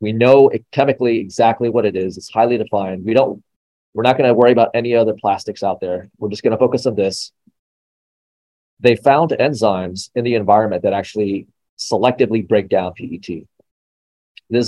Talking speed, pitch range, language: 180 wpm, 100-115 Hz, English